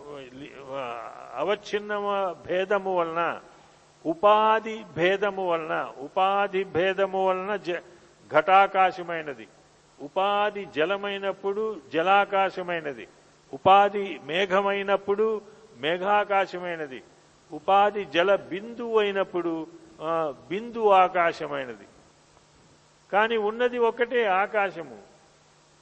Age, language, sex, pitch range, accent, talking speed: 50-69, Telugu, male, 170-200 Hz, native, 60 wpm